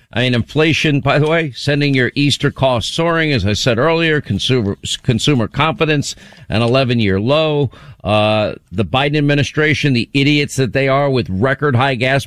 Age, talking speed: 50-69, 165 wpm